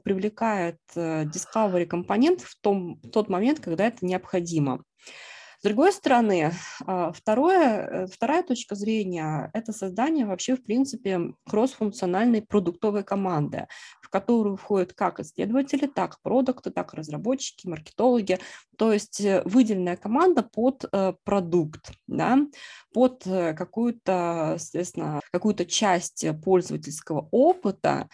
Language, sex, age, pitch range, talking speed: Russian, female, 20-39, 180-230 Hz, 105 wpm